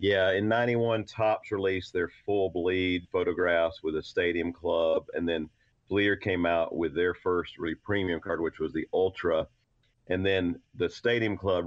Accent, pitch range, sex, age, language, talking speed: American, 85-95 Hz, male, 40-59, English, 165 wpm